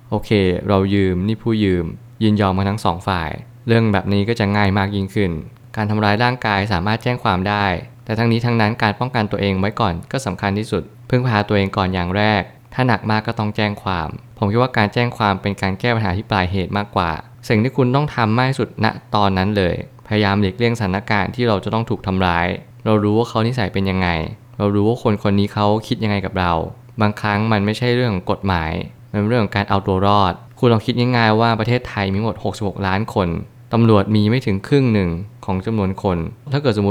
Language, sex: Thai, male